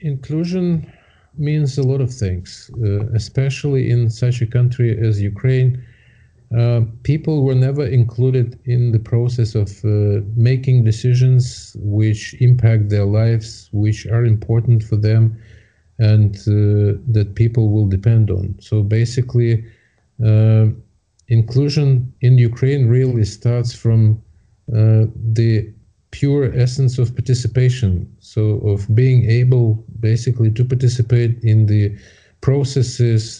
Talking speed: 120 wpm